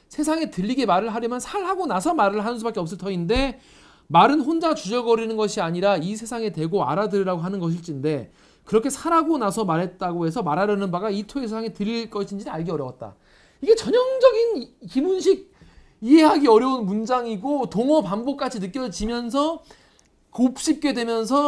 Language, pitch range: Korean, 170-265 Hz